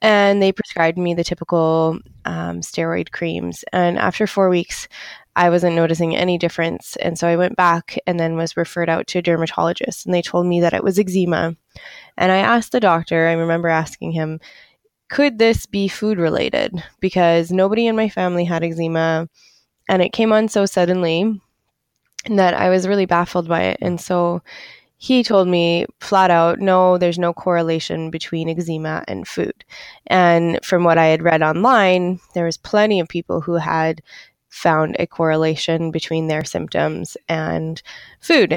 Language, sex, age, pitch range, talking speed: English, female, 20-39, 165-190 Hz, 170 wpm